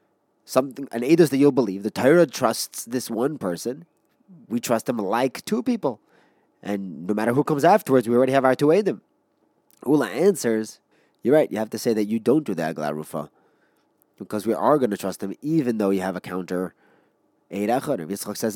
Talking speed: 205 wpm